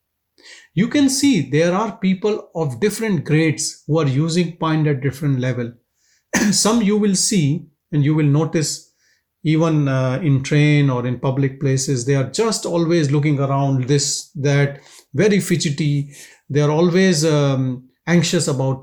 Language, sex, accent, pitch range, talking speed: English, male, Indian, 135-175 Hz, 155 wpm